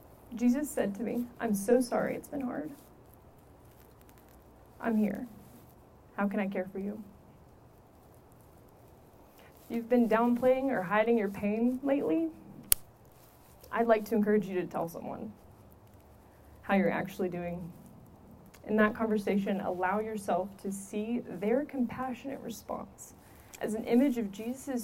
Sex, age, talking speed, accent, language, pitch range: female, 20-39, 130 wpm, American, English, 190-235 Hz